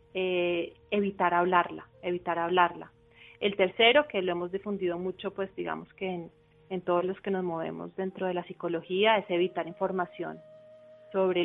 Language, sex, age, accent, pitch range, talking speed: Spanish, female, 30-49, Colombian, 175-195 Hz, 155 wpm